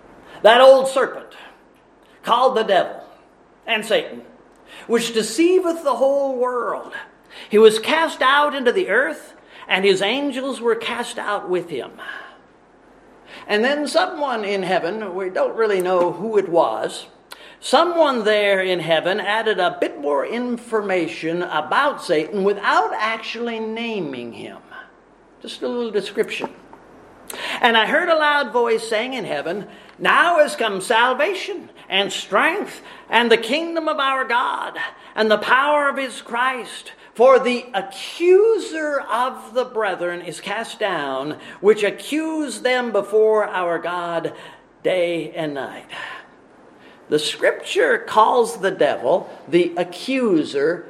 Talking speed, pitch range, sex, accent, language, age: 130 wpm, 200-285 Hz, male, American, English, 50-69